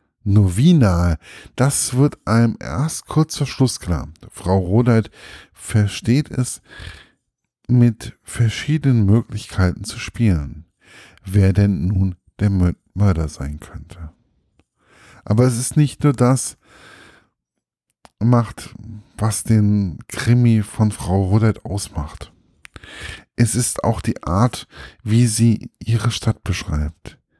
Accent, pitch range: German, 95-120 Hz